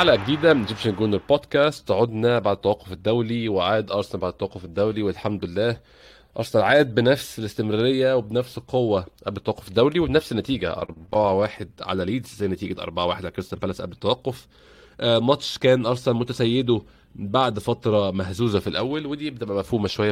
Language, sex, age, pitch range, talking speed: Arabic, male, 20-39, 95-125 Hz, 160 wpm